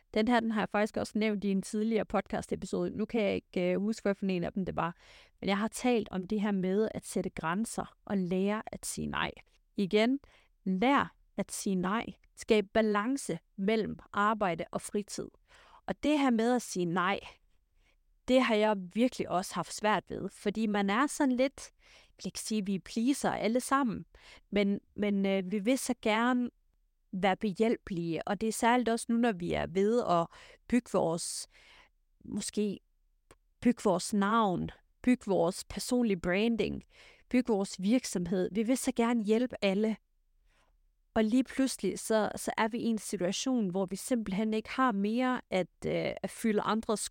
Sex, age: female, 30-49